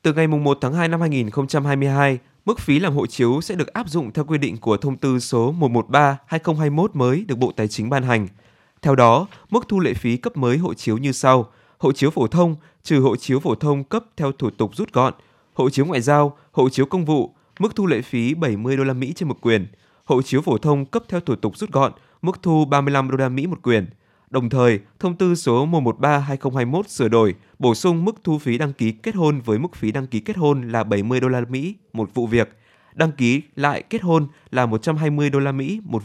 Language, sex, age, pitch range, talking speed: Vietnamese, male, 20-39, 115-150 Hz, 230 wpm